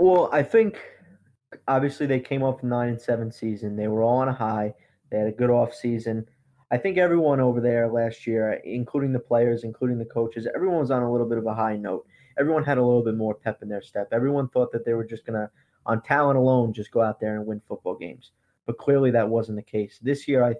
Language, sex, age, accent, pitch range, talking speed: English, male, 20-39, American, 110-130 Hz, 240 wpm